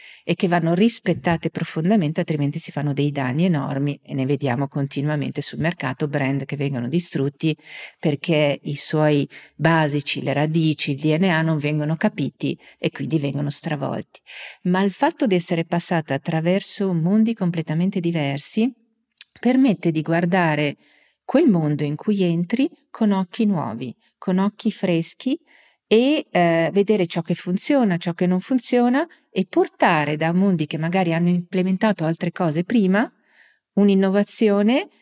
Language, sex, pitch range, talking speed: Italian, female, 165-205 Hz, 140 wpm